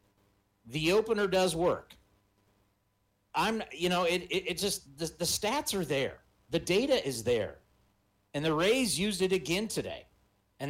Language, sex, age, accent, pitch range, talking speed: English, male, 40-59, American, 125-195 Hz, 155 wpm